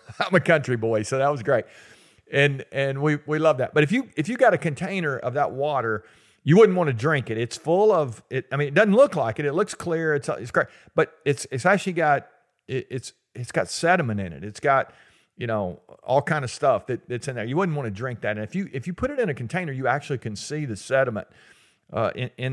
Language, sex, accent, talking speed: English, male, American, 255 wpm